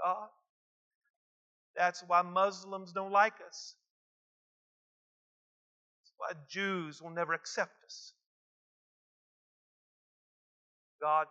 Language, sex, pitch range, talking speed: English, male, 155-225 Hz, 80 wpm